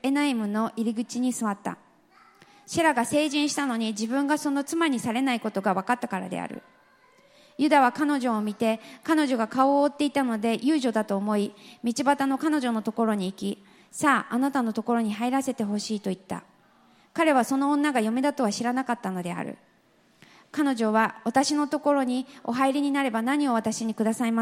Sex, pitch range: female, 225-280 Hz